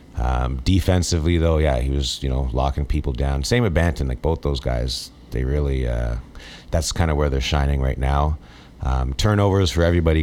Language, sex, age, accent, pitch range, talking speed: English, male, 30-49, American, 65-80 Hz, 195 wpm